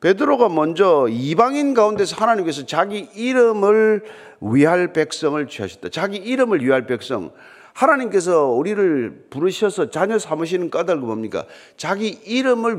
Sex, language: male, Korean